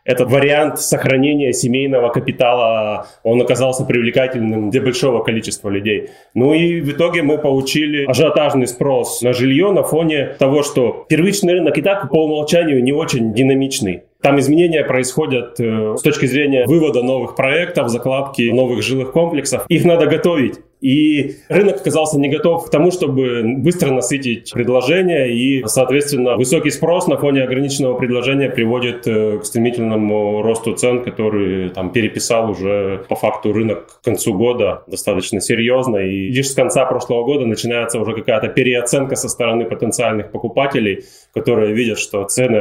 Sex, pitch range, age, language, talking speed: male, 115-145 Hz, 20-39, Russian, 145 wpm